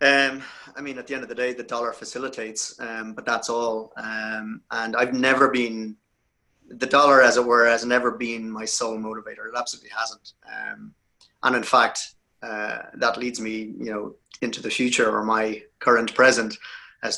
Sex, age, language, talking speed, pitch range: male, 30-49, English, 185 wpm, 110-130 Hz